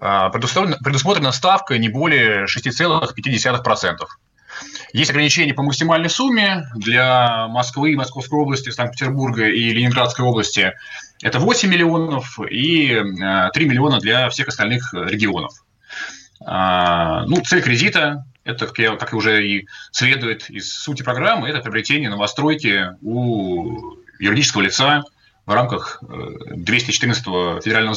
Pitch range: 115-150 Hz